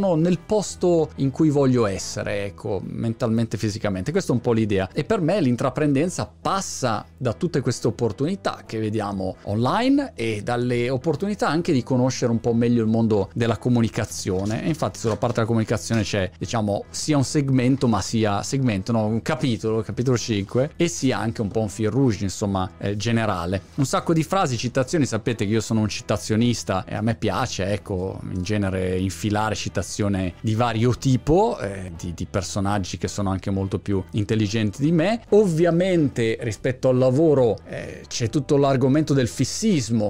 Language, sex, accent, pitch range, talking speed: Italian, male, native, 105-145 Hz, 170 wpm